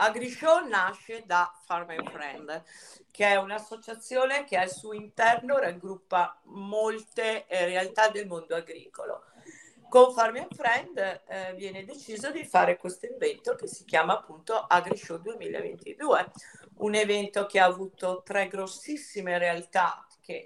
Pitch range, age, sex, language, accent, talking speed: 180-225 Hz, 50-69, female, Italian, native, 130 wpm